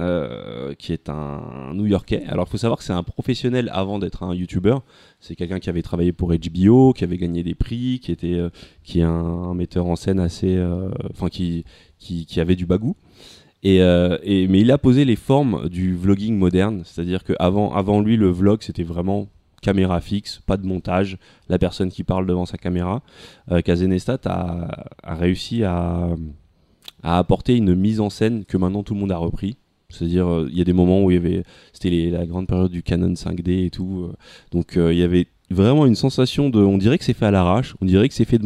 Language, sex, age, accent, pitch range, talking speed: French, male, 20-39, French, 90-105 Hz, 225 wpm